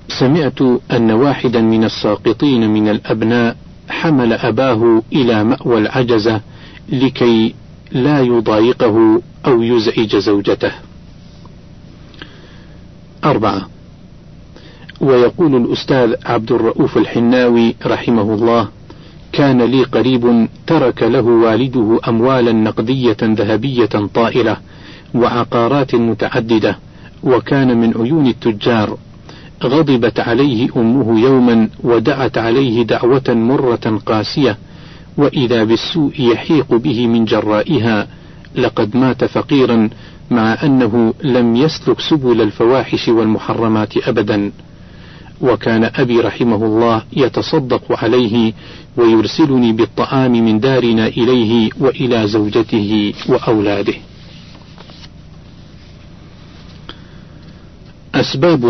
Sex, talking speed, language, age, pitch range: male, 85 wpm, Arabic, 50-69, 115-130 Hz